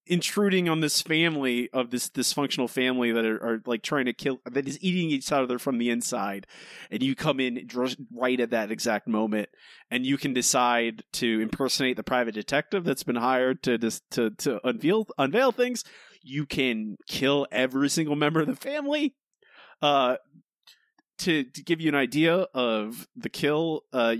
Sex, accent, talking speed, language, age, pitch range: male, American, 180 wpm, English, 30-49, 120-165 Hz